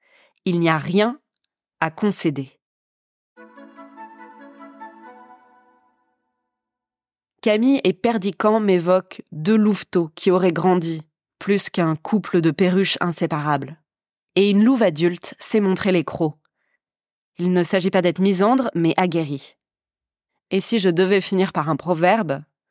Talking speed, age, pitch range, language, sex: 115 wpm, 20-39, 160-200 Hz, French, female